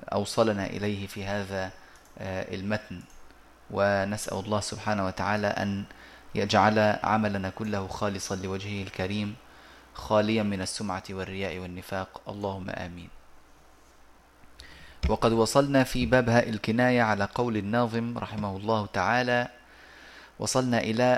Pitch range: 95-120 Hz